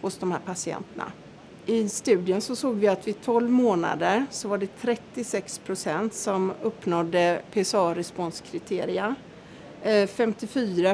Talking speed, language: 115 wpm, Swedish